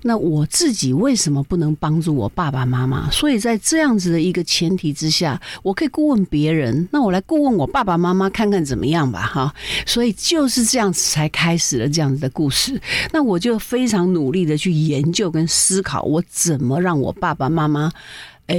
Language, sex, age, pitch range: Chinese, female, 50-69, 150-225 Hz